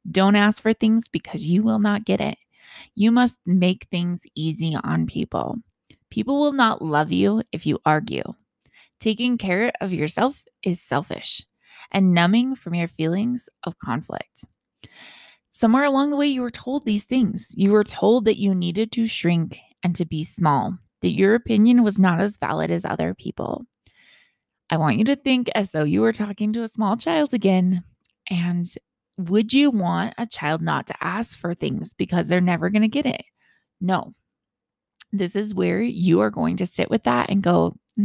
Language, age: English, 20-39